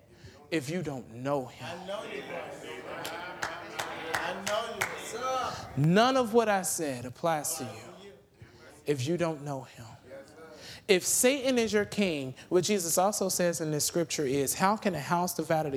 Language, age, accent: English, 30-49, American